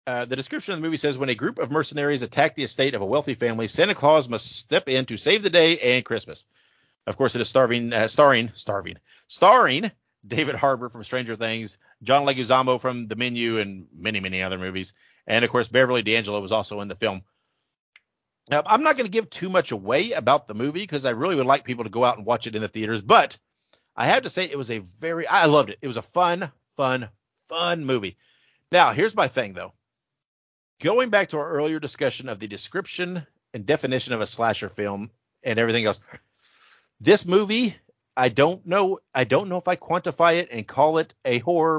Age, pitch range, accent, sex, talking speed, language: 50-69, 115-160 Hz, American, male, 215 wpm, English